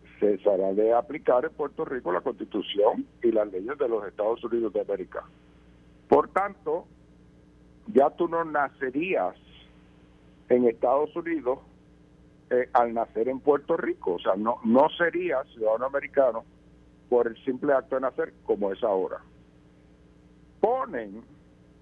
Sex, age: male, 60-79